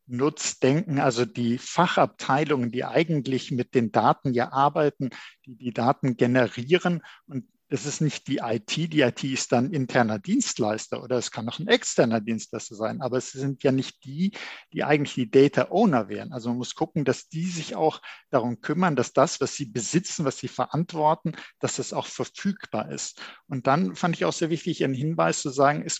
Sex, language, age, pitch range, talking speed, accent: male, German, 50-69, 125-155 Hz, 185 wpm, German